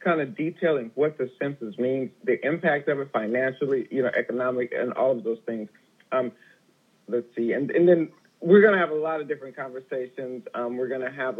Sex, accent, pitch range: male, American, 120-145 Hz